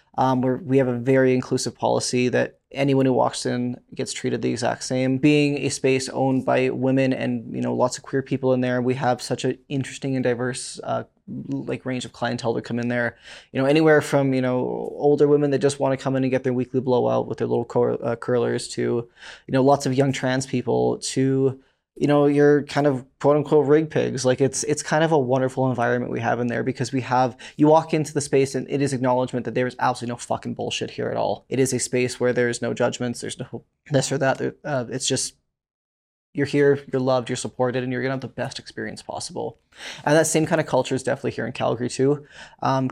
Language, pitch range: English, 125-135 Hz